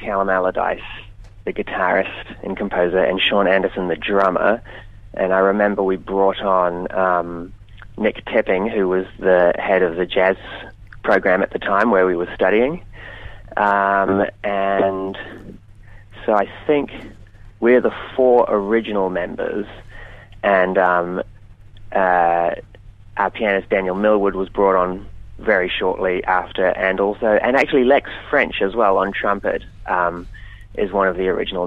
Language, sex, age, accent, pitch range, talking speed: English, male, 30-49, Australian, 95-105 Hz, 140 wpm